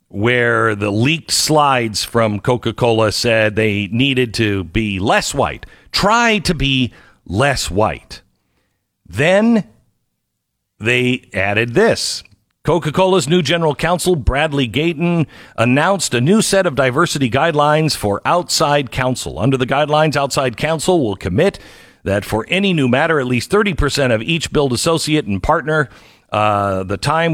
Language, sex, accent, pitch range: English, male, American, 110-155 Hz